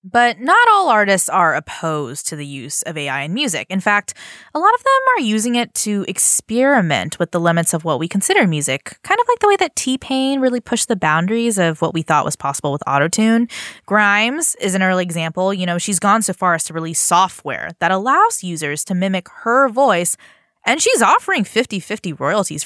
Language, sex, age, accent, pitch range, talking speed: English, female, 10-29, American, 175-265 Hz, 205 wpm